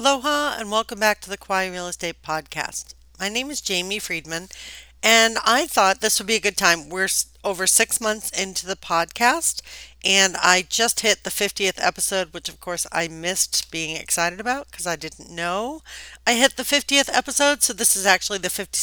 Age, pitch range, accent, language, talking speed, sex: 50-69, 170-220 Hz, American, English, 190 wpm, female